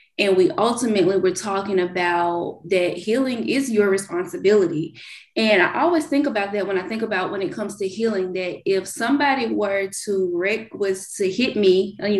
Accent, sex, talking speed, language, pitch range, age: American, female, 180 wpm, English, 190-225 Hz, 20-39